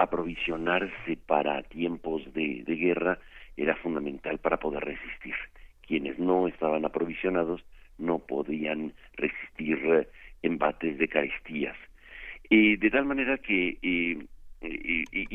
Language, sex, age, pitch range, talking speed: Spanish, male, 60-79, 75-85 Hz, 110 wpm